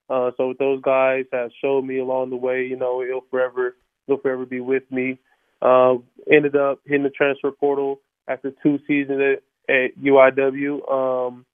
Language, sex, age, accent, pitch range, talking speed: English, male, 20-39, American, 130-140 Hz, 180 wpm